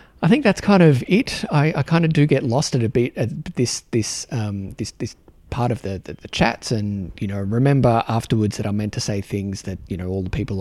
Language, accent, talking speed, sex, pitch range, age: English, Australian, 260 wpm, male, 100-125 Hz, 30-49